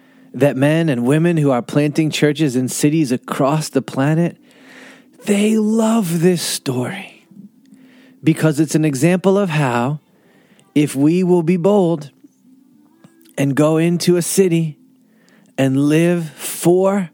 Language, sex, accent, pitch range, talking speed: English, male, American, 150-210 Hz, 125 wpm